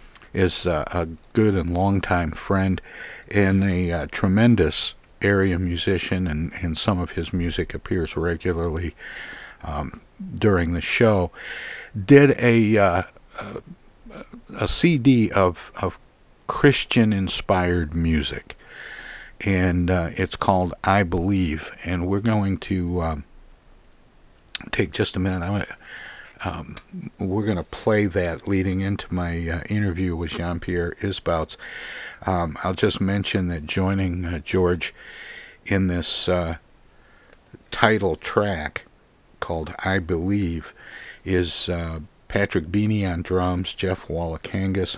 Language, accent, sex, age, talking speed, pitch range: English, American, male, 60-79, 120 wpm, 85-100 Hz